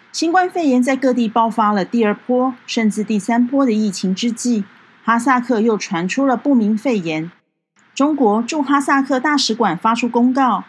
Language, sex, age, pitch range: Chinese, female, 40-59, 205-265 Hz